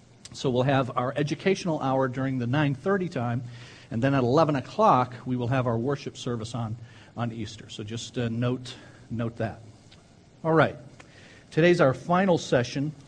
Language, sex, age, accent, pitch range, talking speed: English, male, 50-69, American, 115-140 Hz, 165 wpm